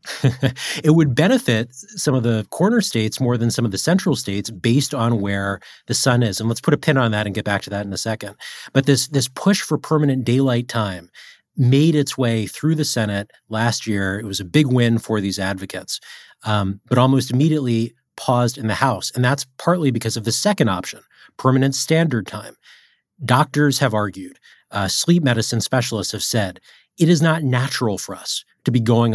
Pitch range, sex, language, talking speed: 110-145 Hz, male, English, 200 wpm